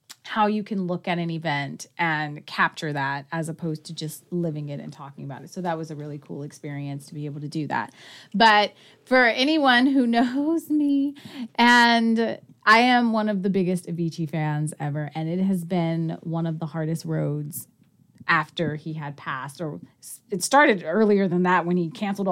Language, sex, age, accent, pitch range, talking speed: English, female, 30-49, American, 160-205 Hz, 190 wpm